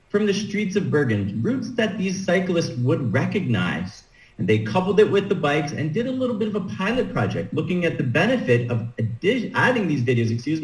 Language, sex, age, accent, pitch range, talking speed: English, male, 40-59, American, 125-185 Hz, 205 wpm